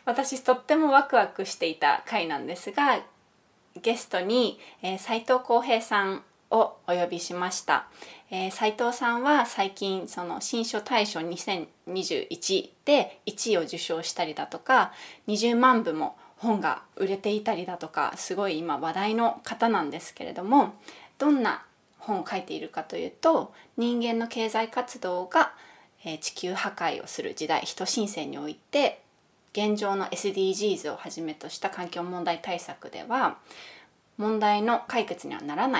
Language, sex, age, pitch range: Japanese, female, 20-39, 180-245 Hz